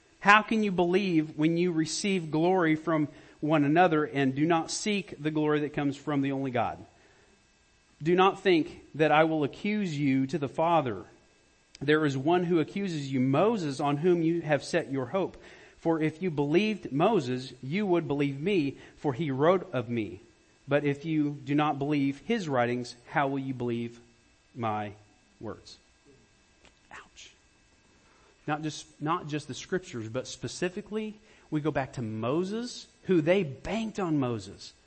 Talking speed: 160 wpm